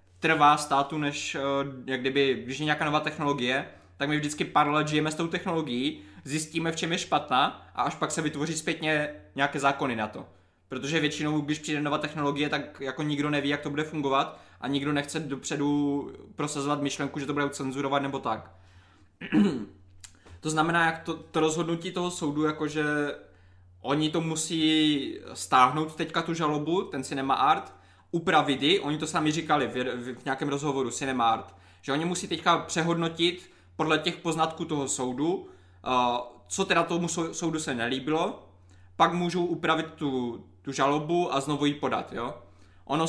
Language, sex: Czech, male